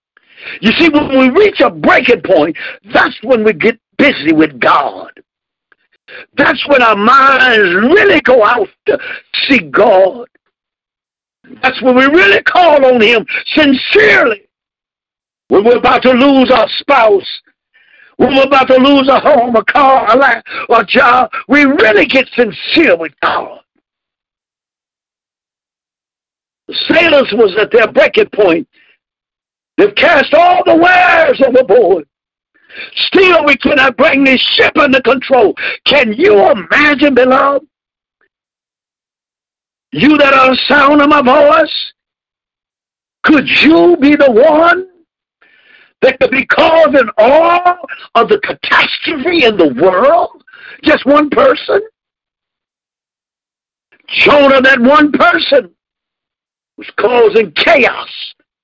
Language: English